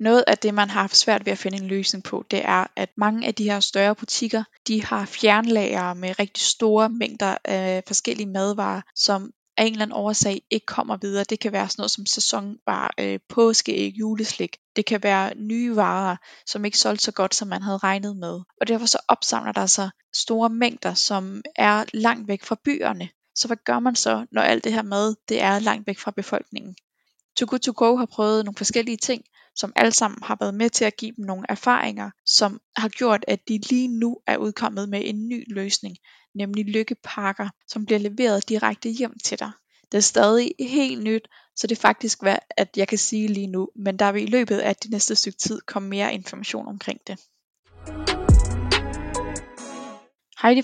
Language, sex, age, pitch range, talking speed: Danish, female, 20-39, 200-230 Hz, 200 wpm